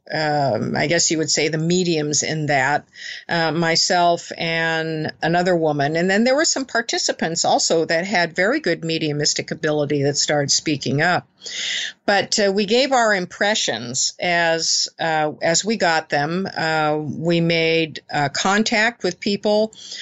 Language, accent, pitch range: English, American, 160-200 Hz